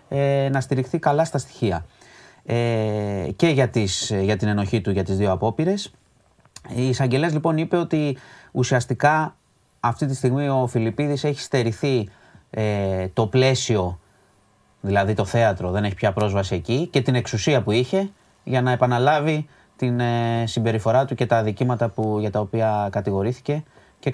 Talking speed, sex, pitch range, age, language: 140 wpm, male, 105-135 Hz, 30-49, Greek